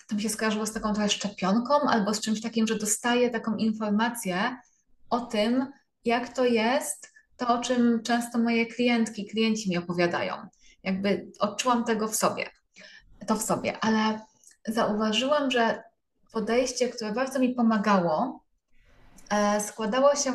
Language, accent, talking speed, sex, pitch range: Polish, native, 140 wpm, female, 215-250 Hz